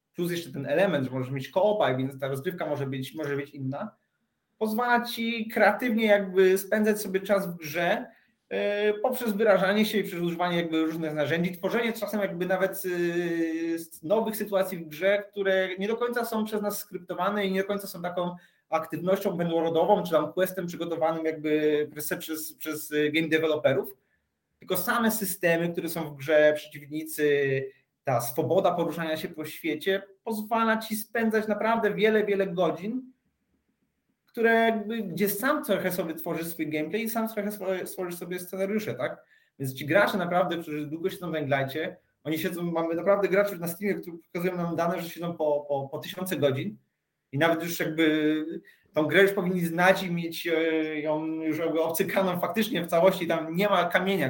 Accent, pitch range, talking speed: native, 155-200 Hz, 170 wpm